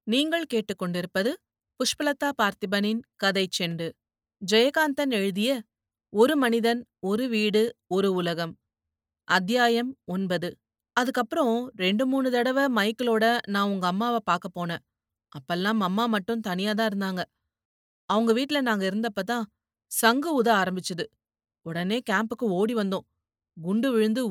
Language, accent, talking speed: Tamil, native, 110 wpm